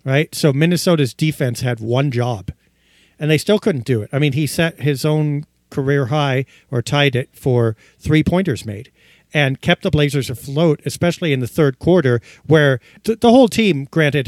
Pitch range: 130-165 Hz